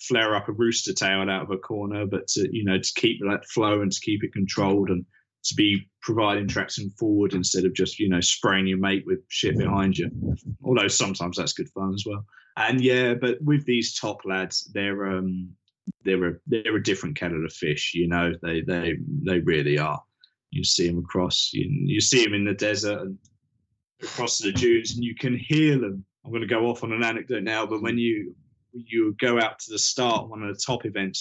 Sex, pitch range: male, 95-125 Hz